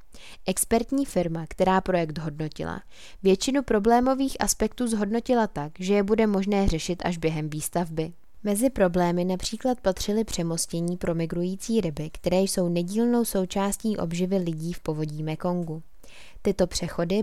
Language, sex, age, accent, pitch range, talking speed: Czech, female, 20-39, native, 170-210 Hz, 130 wpm